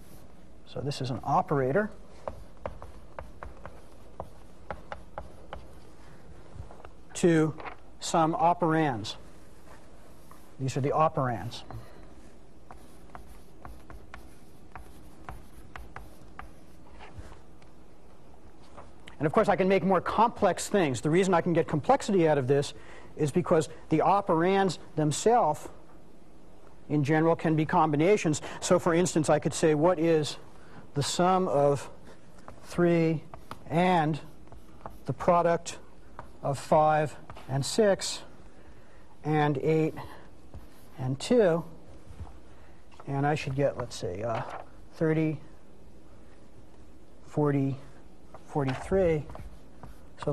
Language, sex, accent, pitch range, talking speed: English, male, American, 120-170 Hz, 90 wpm